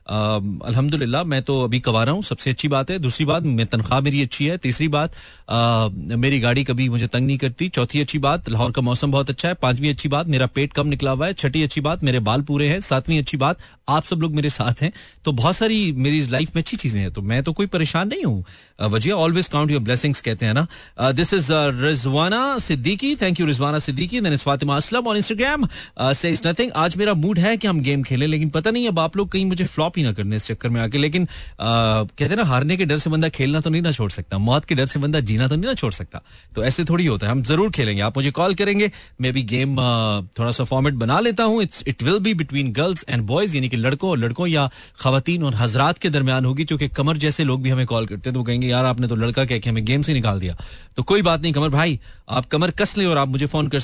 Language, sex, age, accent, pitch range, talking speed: Hindi, male, 30-49, native, 125-170 Hz, 205 wpm